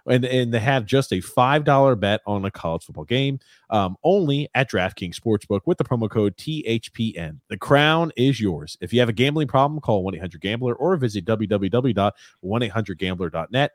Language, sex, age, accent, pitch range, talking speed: English, male, 30-49, American, 100-130 Hz, 175 wpm